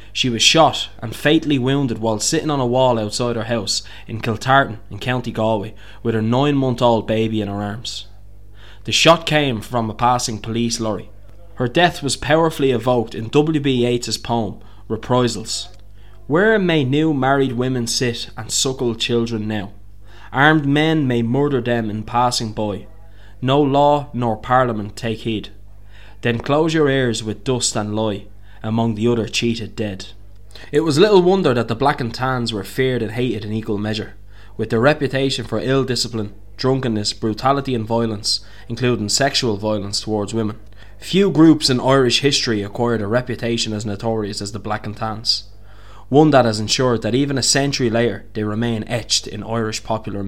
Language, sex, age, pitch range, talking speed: English, male, 20-39, 105-130 Hz, 170 wpm